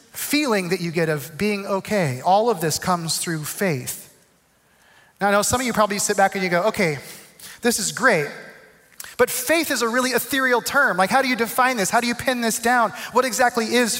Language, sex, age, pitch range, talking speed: English, male, 30-49, 195-245 Hz, 220 wpm